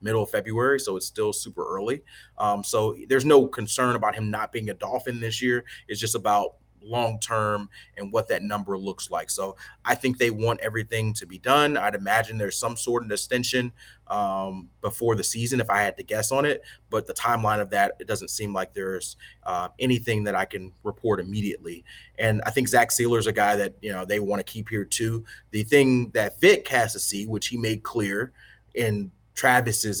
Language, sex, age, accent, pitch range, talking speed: English, male, 30-49, American, 105-120 Hz, 210 wpm